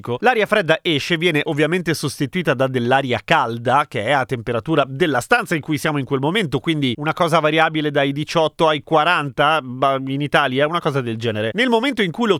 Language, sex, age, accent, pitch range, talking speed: Italian, male, 30-49, native, 135-185 Hz, 195 wpm